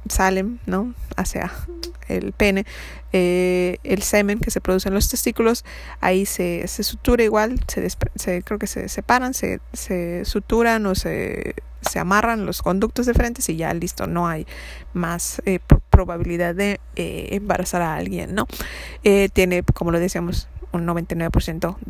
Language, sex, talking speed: Spanish, female, 165 wpm